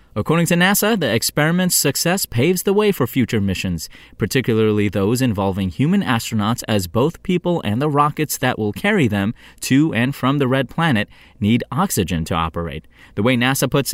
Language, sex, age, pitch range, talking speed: English, male, 20-39, 105-145 Hz, 175 wpm